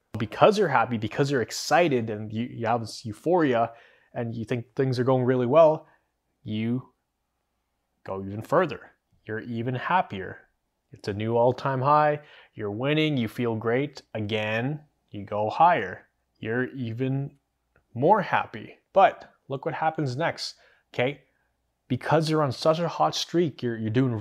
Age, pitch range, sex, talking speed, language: 20-39, 110-140 Hz, male, 150 wpm, English